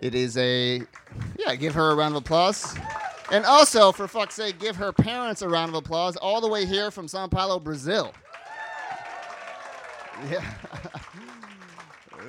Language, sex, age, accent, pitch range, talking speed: English, male, 30-49, American, 115-180 Hz, 150 wpm